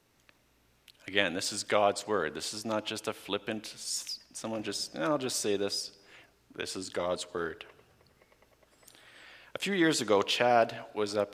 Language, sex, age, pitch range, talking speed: English, male, 50-69, 90-110 Hz, 155 wpm